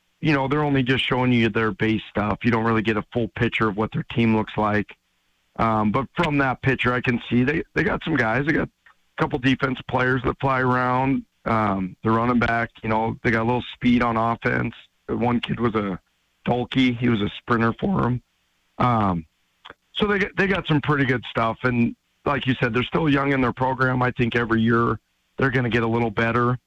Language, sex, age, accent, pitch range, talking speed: English, male, 40-59, American, 110-135 Hz, 225 wpm